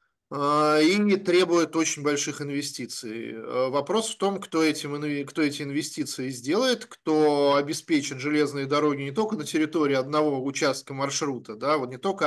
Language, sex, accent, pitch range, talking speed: Russian, male, native, 140-170 Hz, 145 wpm